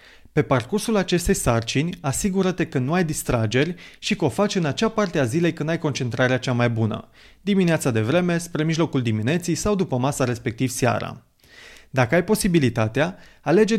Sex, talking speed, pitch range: male, 170 wpm, 120-175 Hz